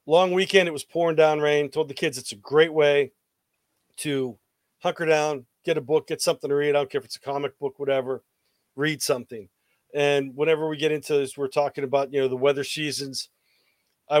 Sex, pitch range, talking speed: male, 135-160 Hz, 210 wpm